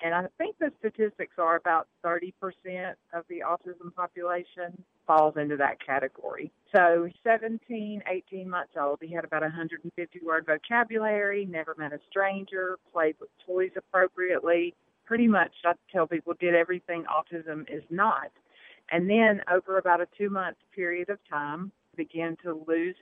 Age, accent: 40-59, American